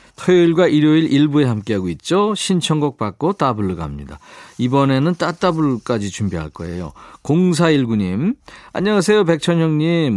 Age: 40-59